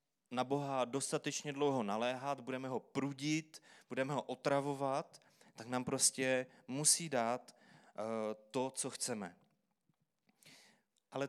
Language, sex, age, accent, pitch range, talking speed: Czech, male, 30-49, native, 125-150 Hz, 105 wpm